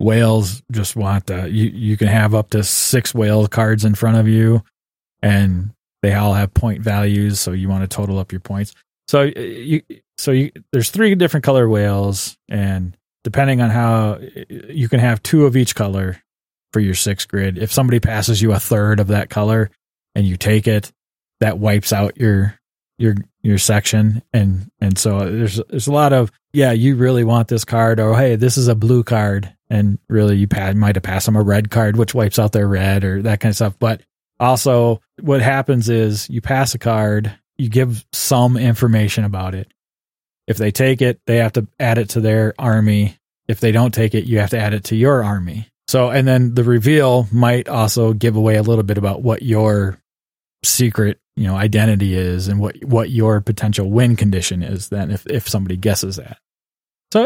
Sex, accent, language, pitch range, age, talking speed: male, American, English, 105-120 Hz, 20-39, 200 wpm